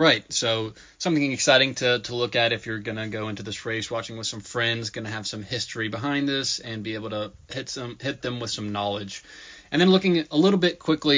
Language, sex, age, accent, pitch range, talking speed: English, male, 20-39, American, 110-130 Hz, 240 wpm